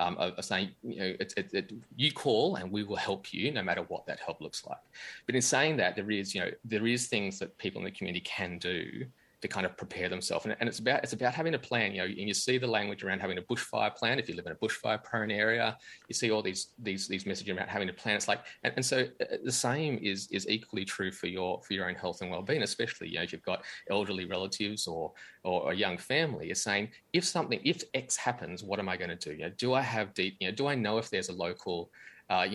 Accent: Australian